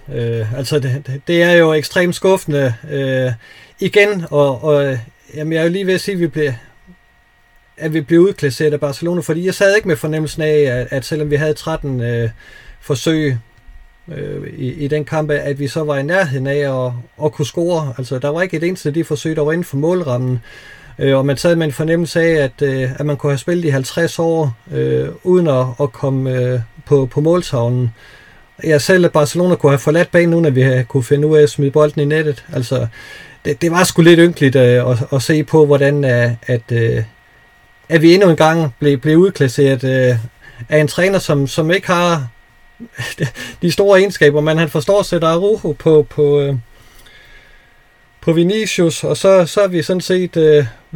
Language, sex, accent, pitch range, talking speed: Danish, male, native, 135-170 Hz, 200 wpm